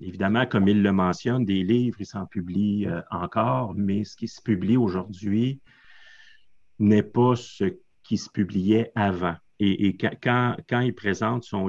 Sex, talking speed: male, 165 wpm